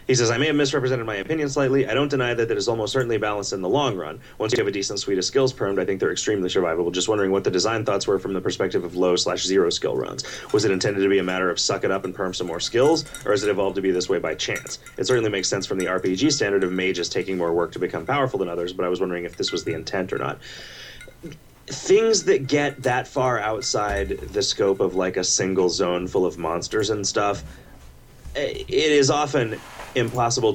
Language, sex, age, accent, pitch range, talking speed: English, male, 30-49, American, 95-155 Hz, 250 wpm